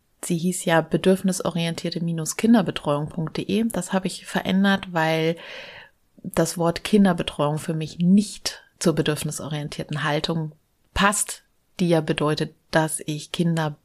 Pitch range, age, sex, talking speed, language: 155-190 Hz, 30-49, female, 110 wpm, German